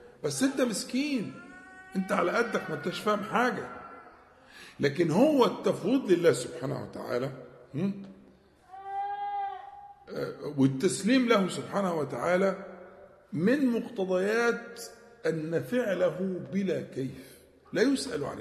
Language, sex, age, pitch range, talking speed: Arabic, male, 50-69, 155-260 Hz, 90 wpm